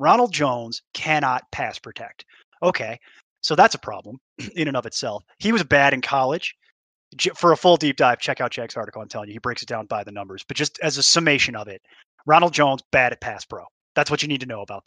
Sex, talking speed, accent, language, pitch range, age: male, 235 wpm, American, English, 130-165 Hz, 20-39